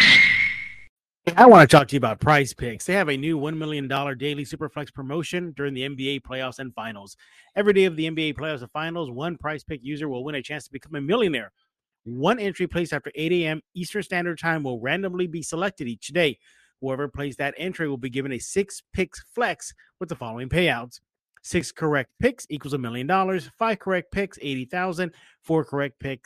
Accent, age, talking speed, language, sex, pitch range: American, 30-49, 200 wpm, English, male, 135-175 Hz